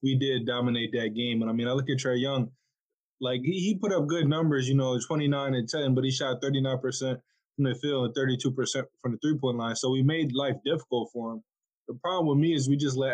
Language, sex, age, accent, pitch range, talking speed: English, male, 20-39, American, 120-140 Hz, 240 wpm